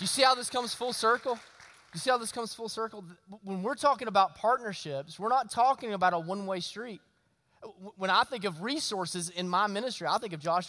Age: 20-39